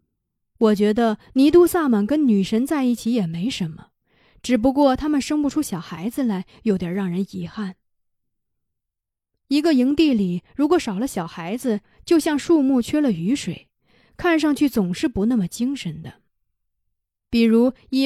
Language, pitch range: Chinese, 200-270 Hz